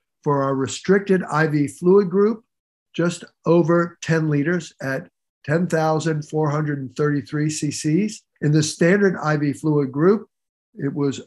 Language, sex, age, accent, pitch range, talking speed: English, male, 50-69, American, 140-180 Hz, 110 wpm